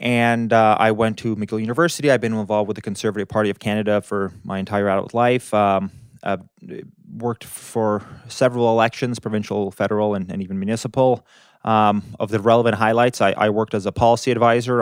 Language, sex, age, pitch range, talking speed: English, male, 20-39, 100-115 Hz, 180 wpm